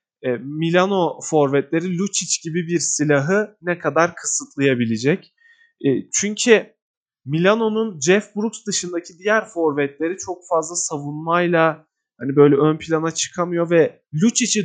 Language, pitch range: Turkish, 150-190 Hz